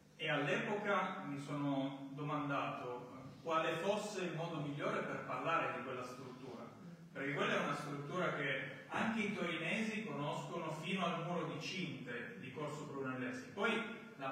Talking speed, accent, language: 145 wpm, native, Italian